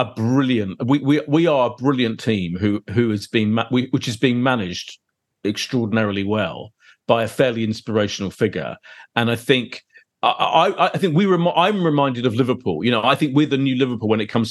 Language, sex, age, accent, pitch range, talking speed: English, male, 40-59, British, 105-135 Hz, 205 wpm